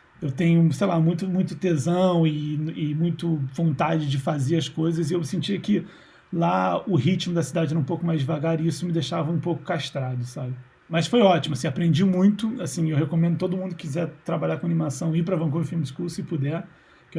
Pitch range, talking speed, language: 160-185 Hz, 215 wpm, Portuguese